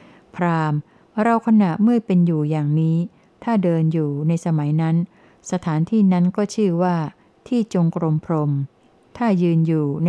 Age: 60-79